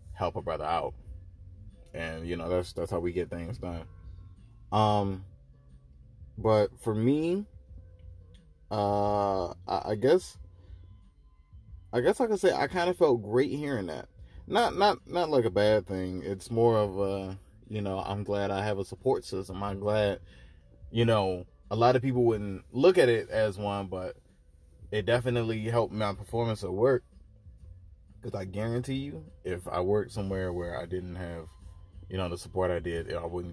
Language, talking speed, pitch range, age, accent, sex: English, 170 wpm, 90-110 Hz, 20-39, American, male